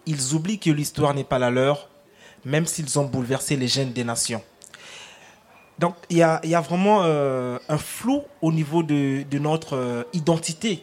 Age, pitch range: 30-49, 140-170 Hz